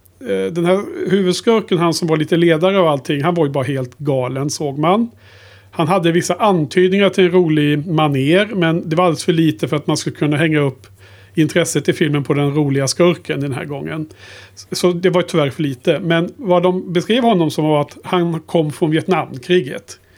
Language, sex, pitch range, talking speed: Swedish, male, 140-175 Hz, 200 wpm